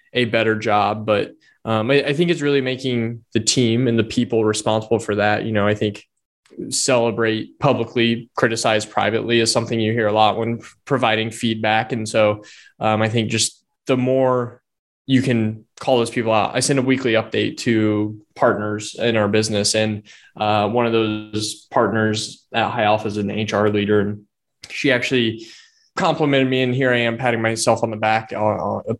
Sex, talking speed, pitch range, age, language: male, 180 wpm, 110-125 Hz, 20-39, English